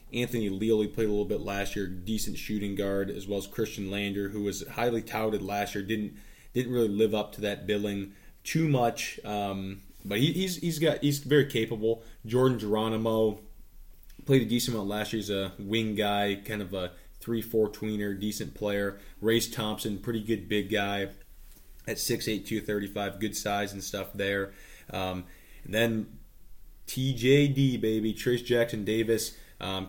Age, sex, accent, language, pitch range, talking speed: 20-39, male, American, English, 100-115 Hz, 170 wpm